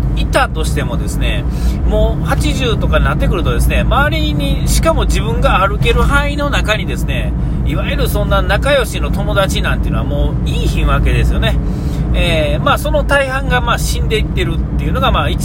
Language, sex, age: Japanese, male, 40-59